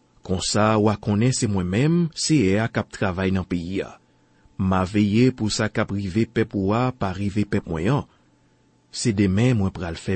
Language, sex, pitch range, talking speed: French, male, 95-130 Hz, 170 wpm